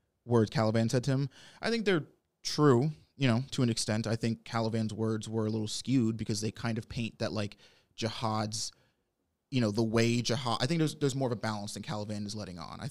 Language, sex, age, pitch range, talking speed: English, male, 20-39, 110-130 Hz, 230 wpm